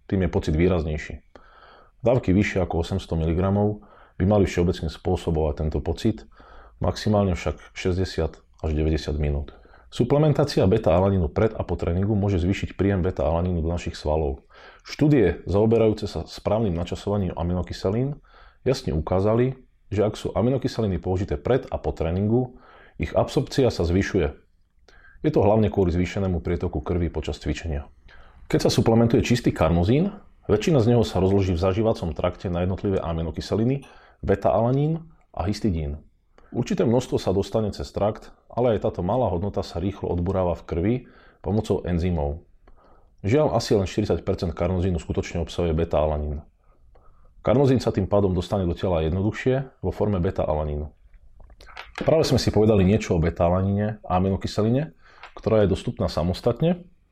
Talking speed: 140 wpm